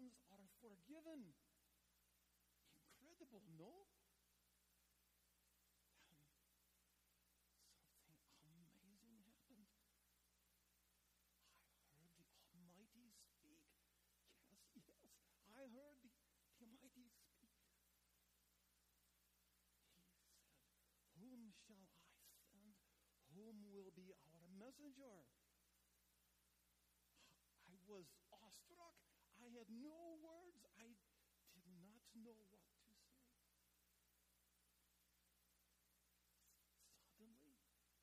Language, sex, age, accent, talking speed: English, male, 50-69, American, 70 wpm